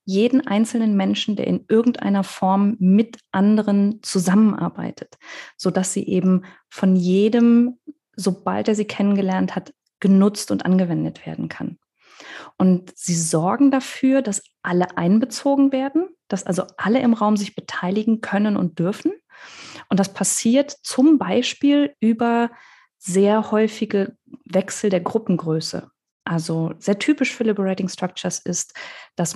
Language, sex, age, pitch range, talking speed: German, female, 20-39, 180-225 Hz, 125 wpm